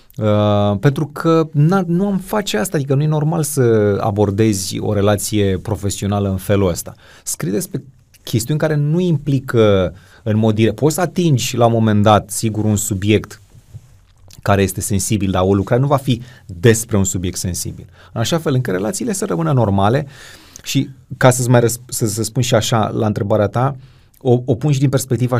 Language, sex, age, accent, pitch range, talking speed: Romanian, male, 30-49, native, 100-125 Hz, 180 wpm